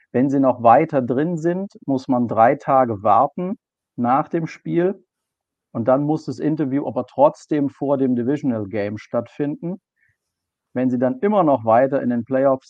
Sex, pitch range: male, 115-145 Hz